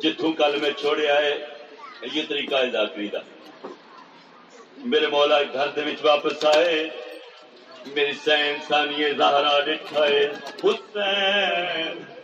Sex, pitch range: male, 150-205 Hz